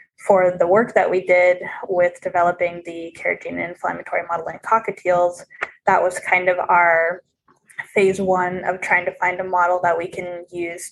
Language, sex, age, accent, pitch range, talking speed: English, female, 10-29, American, 175-195 Hz, 170 wpm